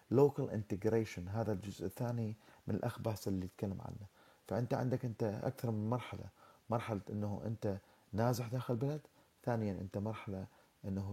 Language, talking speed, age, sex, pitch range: Arabic, 140 wpm, 30-49, male, 105-130 Hz